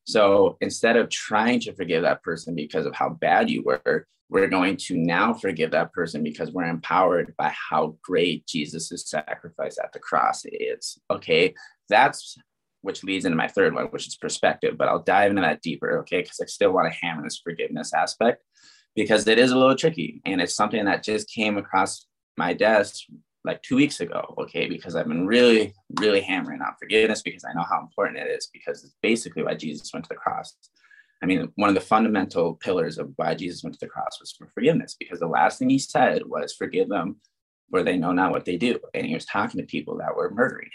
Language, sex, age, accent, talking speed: English, male, 20-39, American, 215 wpm